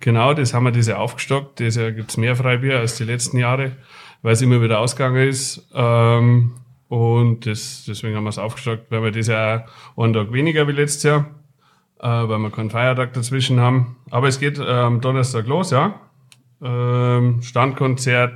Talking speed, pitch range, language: 180 wpm, 115-135 Hz, German